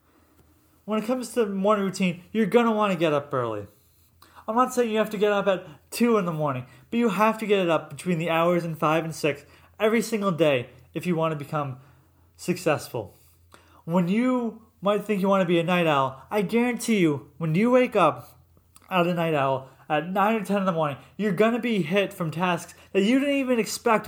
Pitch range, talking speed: 145-210 Hz, 230 wpm